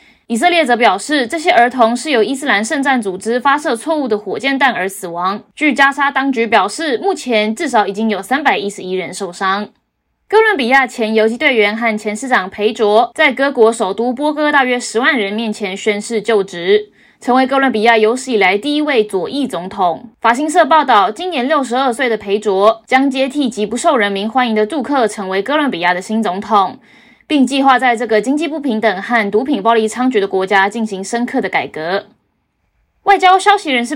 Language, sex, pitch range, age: Chinese, female, 210-275 Hz, 20-39